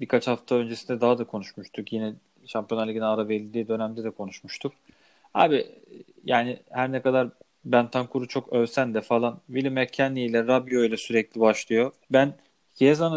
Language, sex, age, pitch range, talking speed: Turkish, male, 30-49, 115-135 Hz, 155 wpm